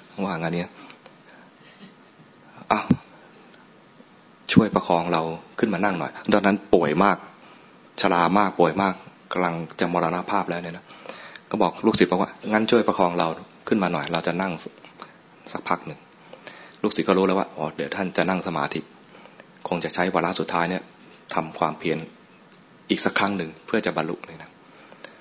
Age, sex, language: 20-39, male, English